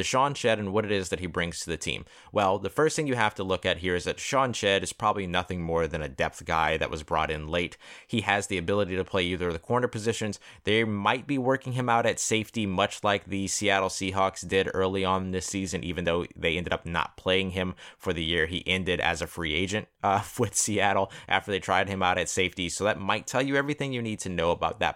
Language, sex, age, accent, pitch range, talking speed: English, male, 30-49, American, 85-105 Hz, 255 wpm